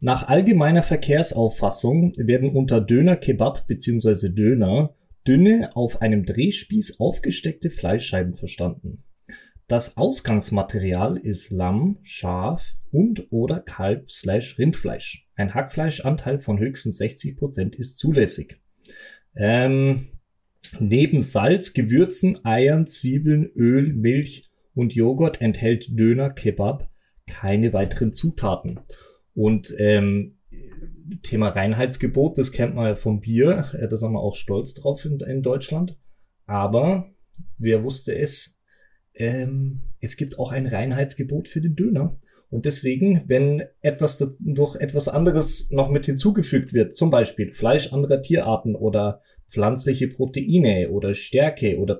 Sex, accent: male, German